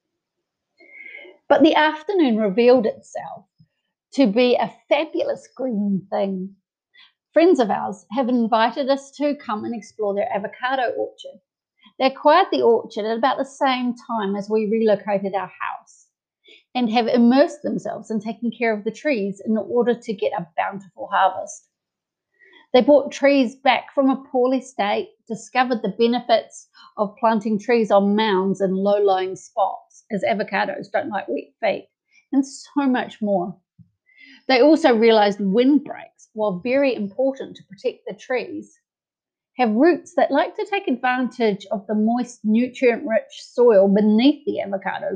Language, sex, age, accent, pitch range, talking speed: English, female, 30-49, Australian, 210-280 Hz, 145 wpm